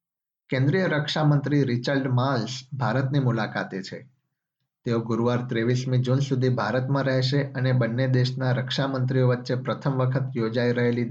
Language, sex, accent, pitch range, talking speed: Gujarati, male, native, 125-140 Hz, 115 wpm